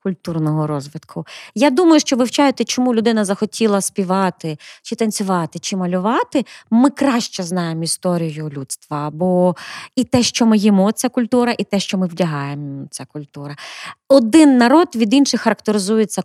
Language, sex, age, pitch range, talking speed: Ukrainian, female, 30-49, 180-250 Hz, 145 wpm